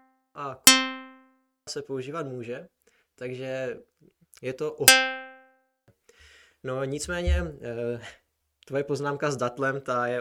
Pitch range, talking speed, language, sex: 110-130 Hz, 100 wpm, Czech, male